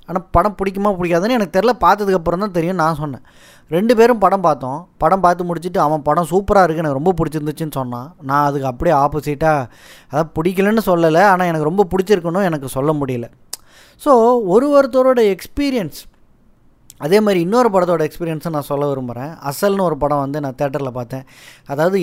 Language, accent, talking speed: Tamil, native, 160 wpm